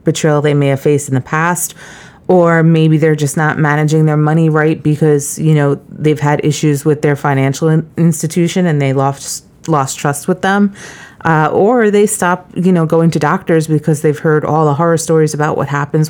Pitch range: 145-165 Hz